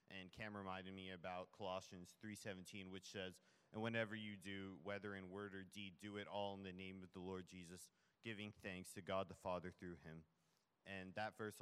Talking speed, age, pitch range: 200 wpm, 30-49, 95-110 Hz